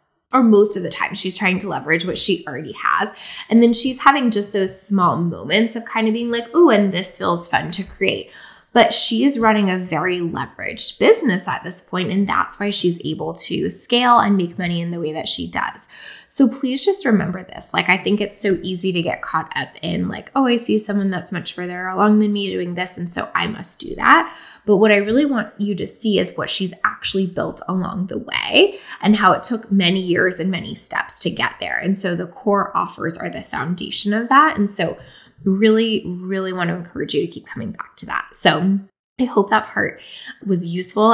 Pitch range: 175-210 Hz